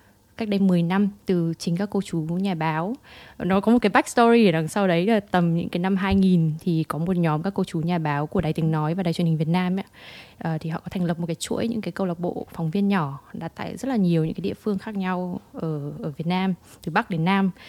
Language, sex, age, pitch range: Vietnamese, female, 20-39, 170-225 Hz